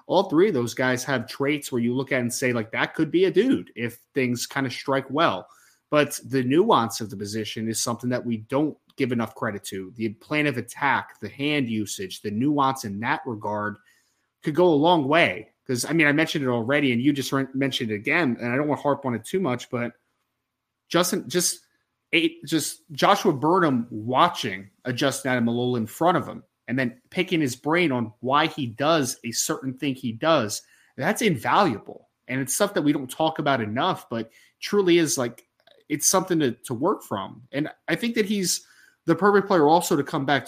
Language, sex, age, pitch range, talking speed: English, male, 30-49, 120-160 Hz, 210 wpm